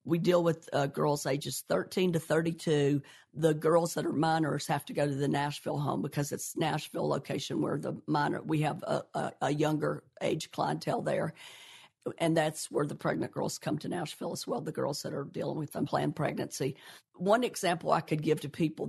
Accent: American